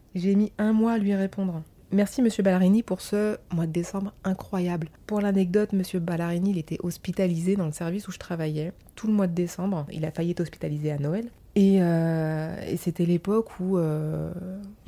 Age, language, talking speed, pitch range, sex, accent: 30-49, French, 195 wpm, 160-190 Hz, female, French